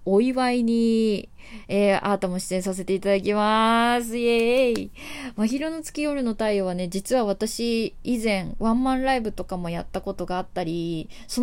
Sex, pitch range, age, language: female, 190-240 Hz, 20-39, Japanese